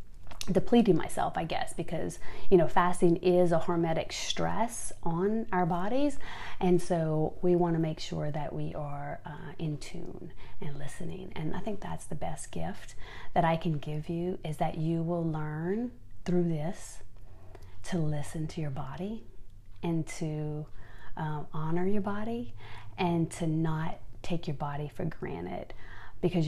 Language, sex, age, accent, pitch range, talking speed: English, female, 30-49, American, 150-180 Hz, 155 wpm